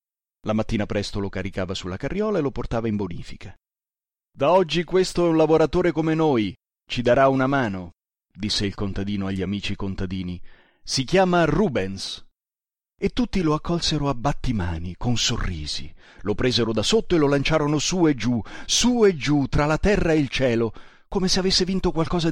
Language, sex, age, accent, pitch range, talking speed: Italian, male, 30-49, native, 105-160 Hz, 175 wpm